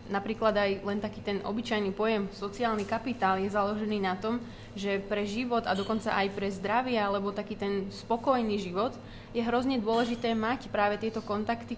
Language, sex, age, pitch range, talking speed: Slovak, female, 20-39, 200-230 Hz, 170 wpm